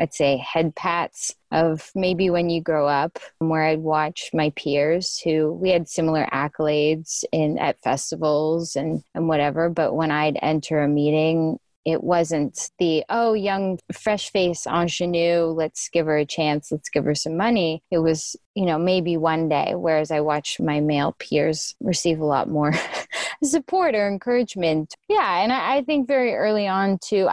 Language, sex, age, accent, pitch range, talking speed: English, female, 20-39, American, 155-195 Hz, 175 wpm